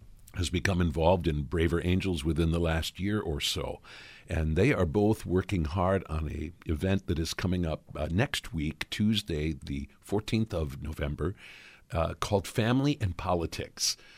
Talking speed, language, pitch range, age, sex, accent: 160 wpm, English, 80-100 Hz, 50-69, male, American